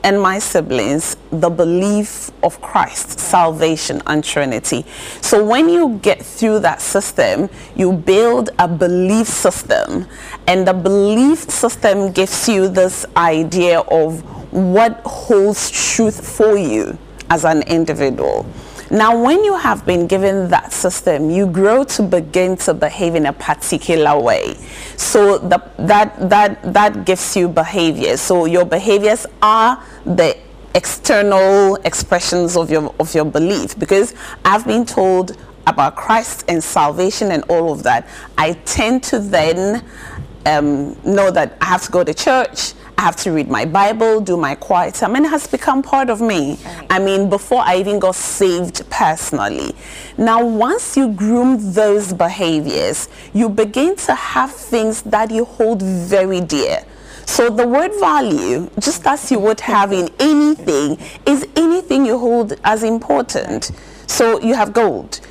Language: English